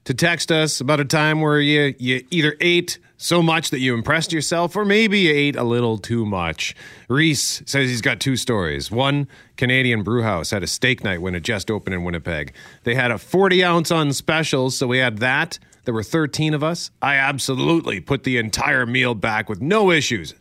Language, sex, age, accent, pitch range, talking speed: English, male, 40-59, American, 110-155 Hz, 205 wpm